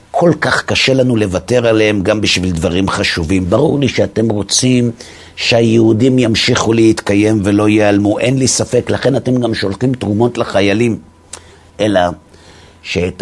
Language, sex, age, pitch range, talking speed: Hebrew, male, 50-69, 90-110 Hz, 135 wpm